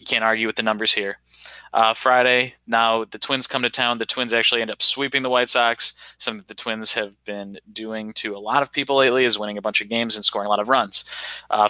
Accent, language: American, English